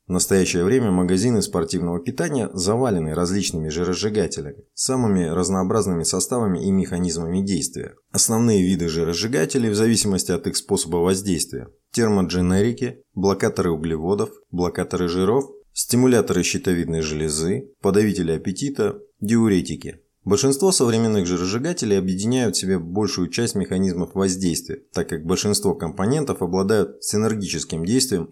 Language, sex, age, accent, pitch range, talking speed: Russian, male, 20-39, native, 85-105 Hz, 110 wpm